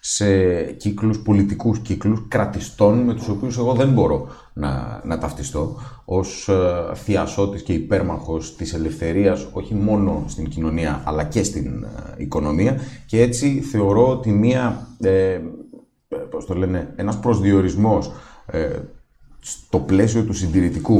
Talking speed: 130 wpm